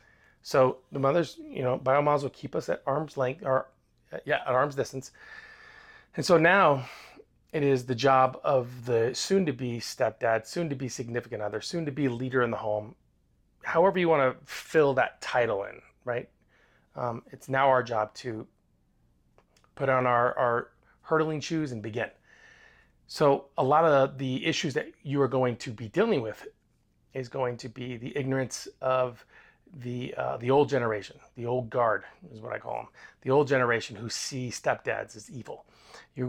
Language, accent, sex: English, American, male